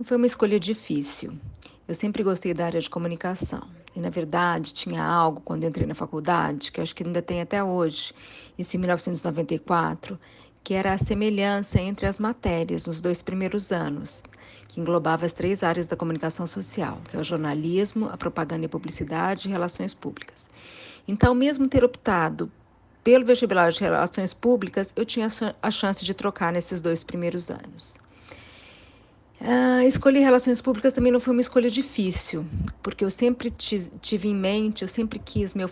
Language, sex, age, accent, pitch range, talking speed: Portuguese, female, 40-59, Brazilian, 170-205 Hz, 165 wpm